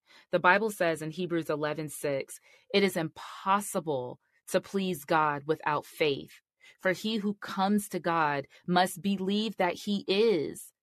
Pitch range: 165-210 Hz